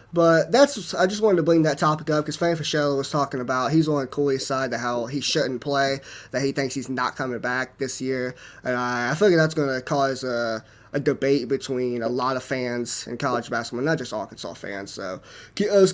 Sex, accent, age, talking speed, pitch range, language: male, American, 20-39, 240 wpm, 130-165 Hz, English